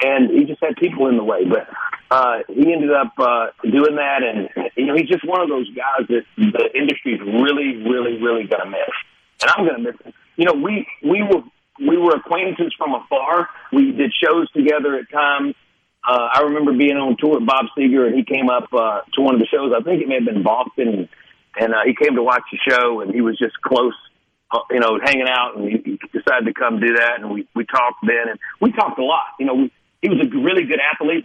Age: 50-69